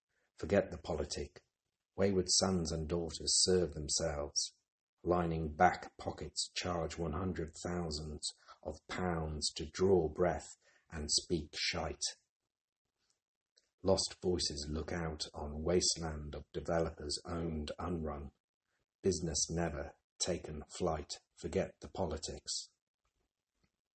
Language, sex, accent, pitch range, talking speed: English, male, British, 75-90 Hz, 105 wpm